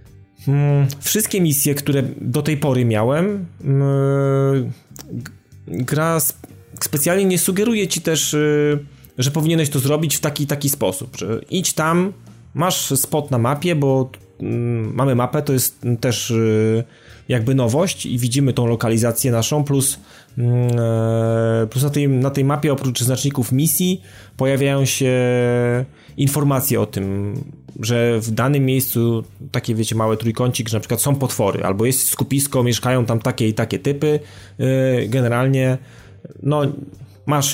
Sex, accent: male, native